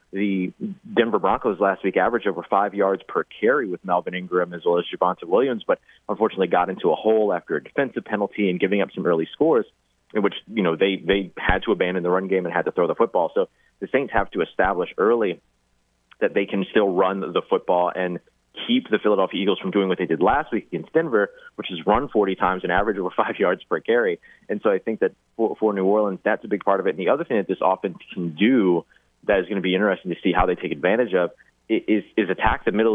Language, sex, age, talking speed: English, male, 30-49, 245 wpm